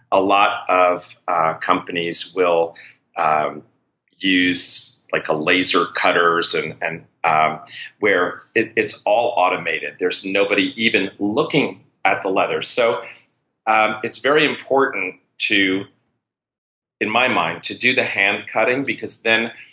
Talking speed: 130 wpm